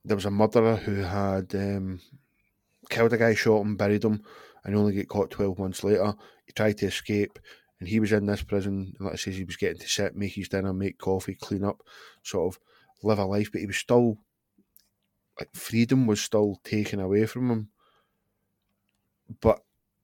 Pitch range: 100-115 Hz